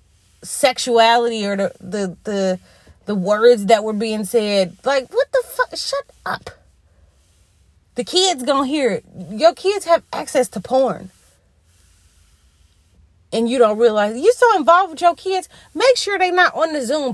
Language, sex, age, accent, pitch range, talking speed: English, female, 30-49, American, 185-260 Hz, 160 wpm